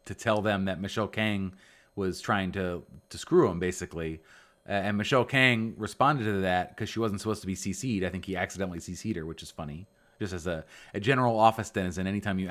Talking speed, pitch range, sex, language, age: 220 wpm, 95-115 Hz, male, English, 30-49